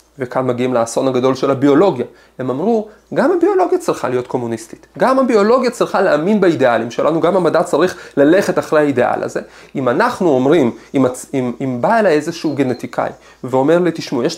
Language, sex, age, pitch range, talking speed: Hebrew, male, 30-49, 130-205 Hz, 165 wpm